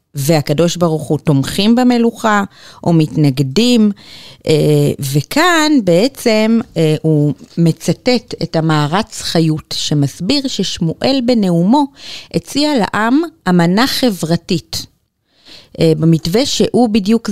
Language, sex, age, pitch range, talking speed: Hebrew, female, 30-49, 160-225 Hz, 85 wpm